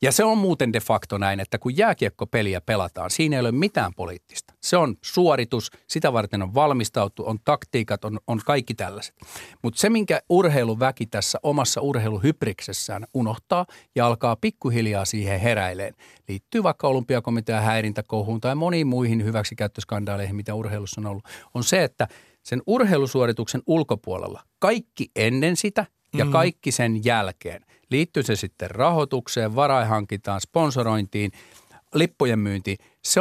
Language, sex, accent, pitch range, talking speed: Finnish, male, native, 110-160 Hz, 135 wpm